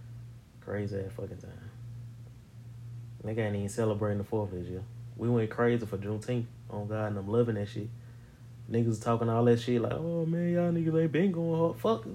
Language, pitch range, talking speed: English, 110-120 Hz, 200 wpm